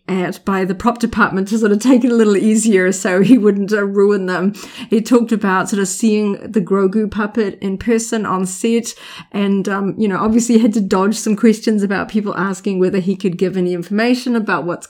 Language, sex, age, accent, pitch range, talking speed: English, female, 30-49, Australian, 190-230 Hz, 220 wpm